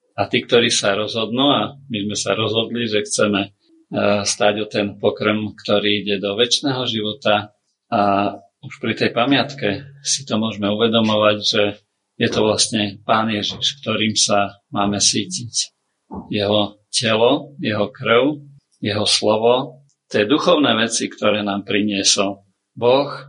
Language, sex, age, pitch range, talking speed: Slovak, male, 50-69, 100-120 Hz, 135 wpm